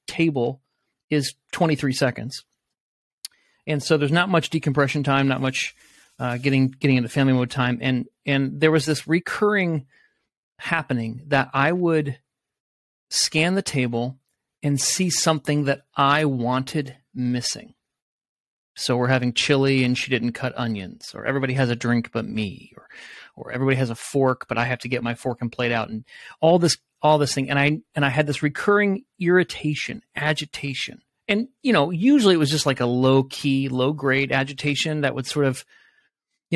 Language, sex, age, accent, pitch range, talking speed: English, male, 30-49, American, 130-160 Hz, 175 wpm